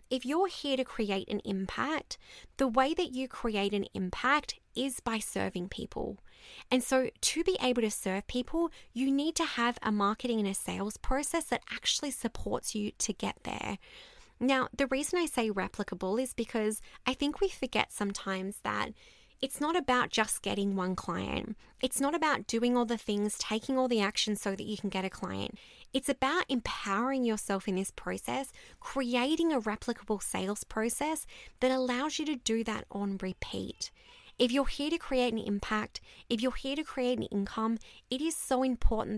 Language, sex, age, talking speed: English, female, 20-39, 185 wpm